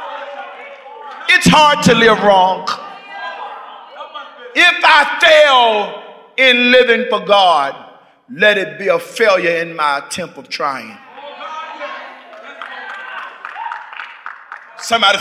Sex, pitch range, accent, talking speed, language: male, 210-270 Hz, American, 85 wpm, English